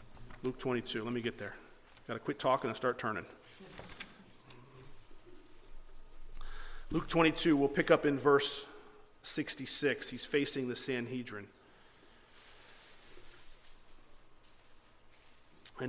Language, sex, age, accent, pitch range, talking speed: English, male, 40-59, American, 125-205 Hz, 100 wpm